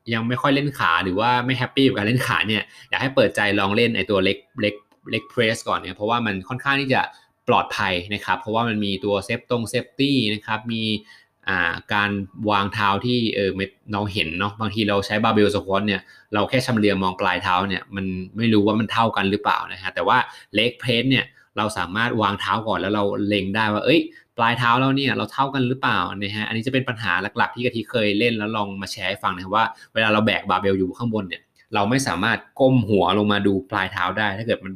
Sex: male